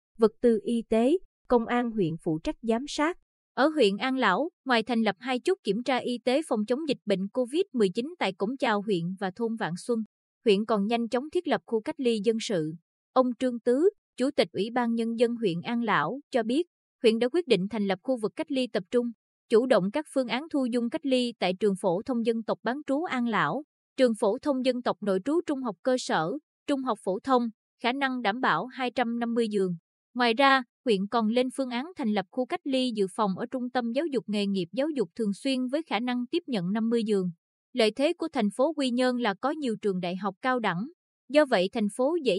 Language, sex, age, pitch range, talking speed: Vietnamese, female, 20-39, 210-260 Hz, 235 wpm